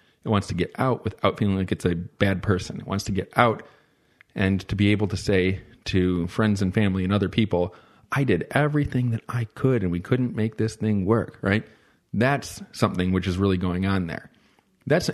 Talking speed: 210 wpm